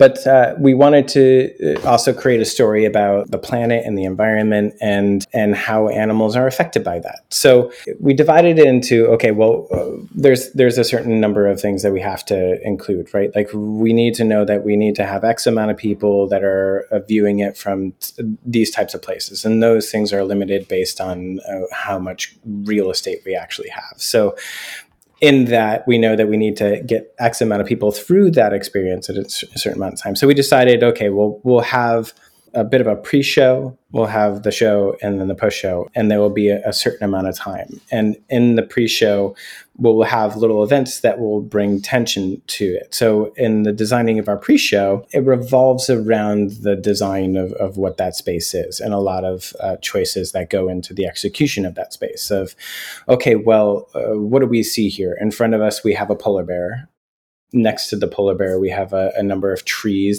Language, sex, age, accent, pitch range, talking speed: English, male, 30-49, American, 100-120 Hz, 210 wpm